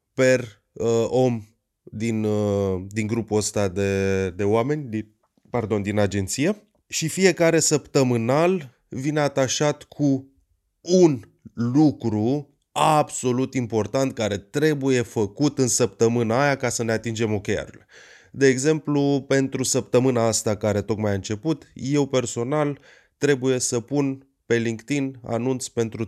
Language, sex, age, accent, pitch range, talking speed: Romanian, male, 20-39, native, 110-140 Hz, 125 wpm